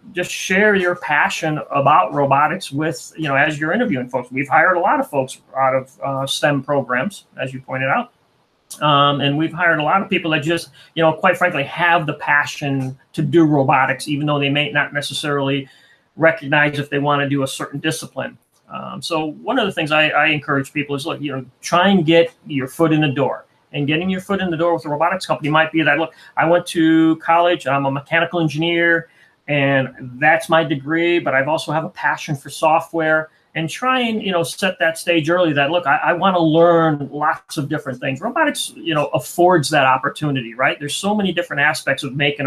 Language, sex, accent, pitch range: English, male, American, 140-165 Hz